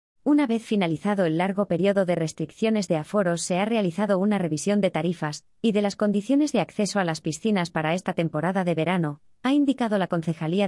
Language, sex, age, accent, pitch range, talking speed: Spanish, female, 20-39, Spanish, 160-210 Hz, 195 wpm